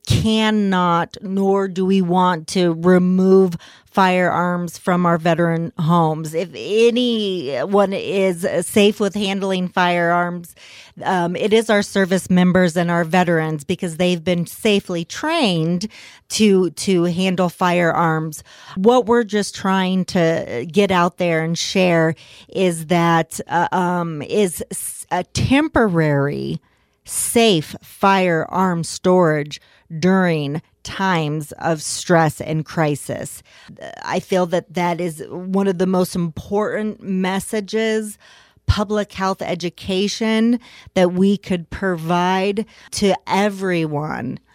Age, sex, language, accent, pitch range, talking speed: 40-59, female, English, American, 170-200 Hz, 110 wpm